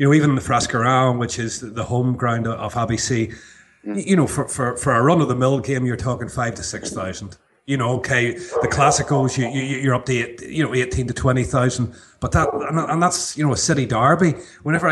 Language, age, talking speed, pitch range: English, 30-49, 215 wpm, 115-140 Hz